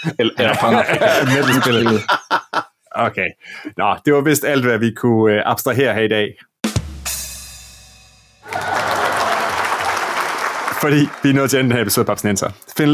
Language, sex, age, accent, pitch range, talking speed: Danish, male, 30-49, native, 105-140 Hz, 145 wpm